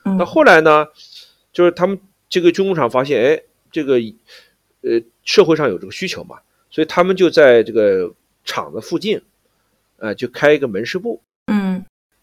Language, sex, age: Chinese, male, 50-69